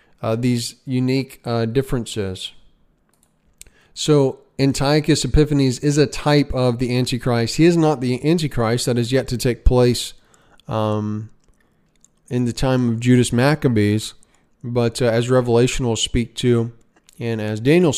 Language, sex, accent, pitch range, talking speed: English, male, American, 115-130 Hz, 140 wpm